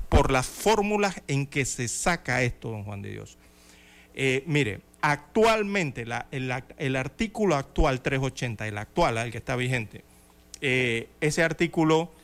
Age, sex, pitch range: 40-59, male, 115-160 Hz